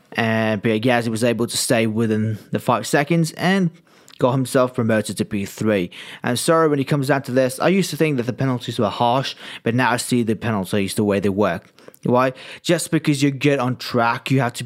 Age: 20-39